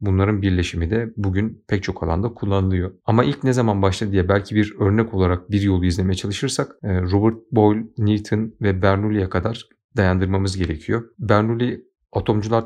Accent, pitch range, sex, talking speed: native, 95-110 Hz, male, 150 wpm